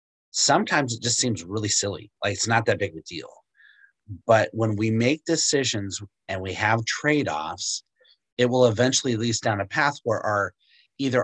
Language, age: English, 30-49